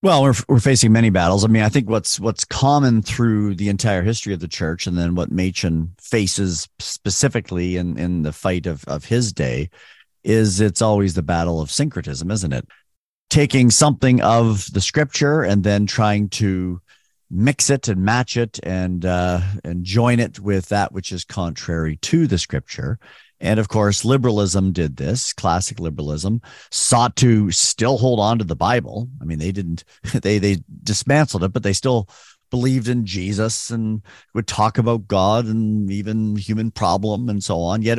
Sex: male